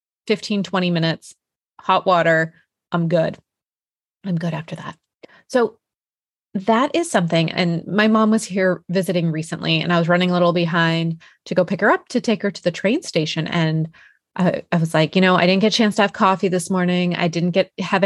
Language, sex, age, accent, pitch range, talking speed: English, female, 20-39, American, 165-200 Hz, 205 wpm